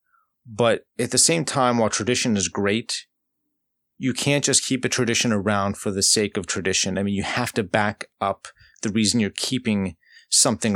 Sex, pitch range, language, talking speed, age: male, 100-120 Hz, English, 185 wpm, 30-49